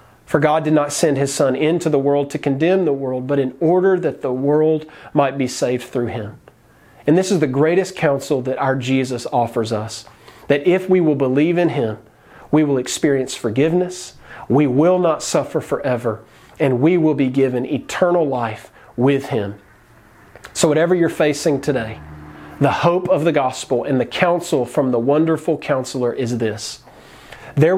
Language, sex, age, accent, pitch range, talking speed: English, male, 40-59, American, 120-160 Hz, 175 wpm